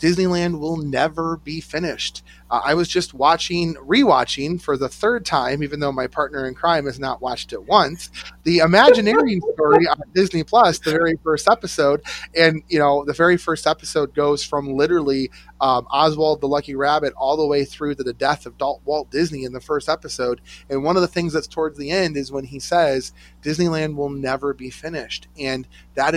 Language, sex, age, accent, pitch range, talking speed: English, male, 30-49, American, 130-160 Hz, 195 wpm